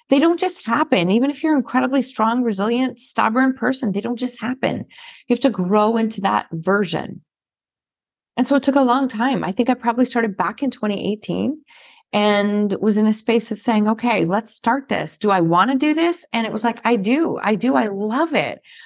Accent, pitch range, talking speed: American, 210-260 Hz, 215 wpm